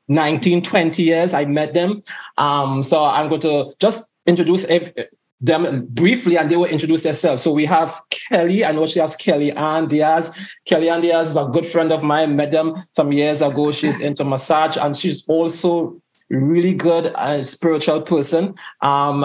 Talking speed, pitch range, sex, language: 185 wpm, 150-175 Hz, male, English